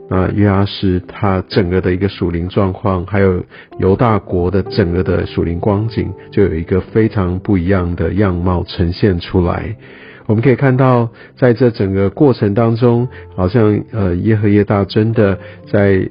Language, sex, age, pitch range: Chinese, male, 50-69, 95-115 Hz